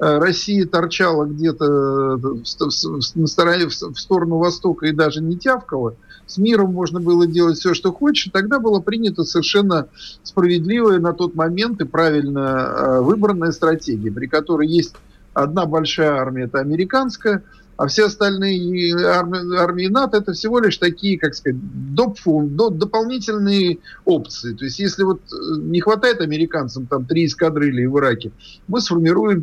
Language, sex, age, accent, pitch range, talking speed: Russian, male, 50-69, native, 145-195 Hz, 130 wpm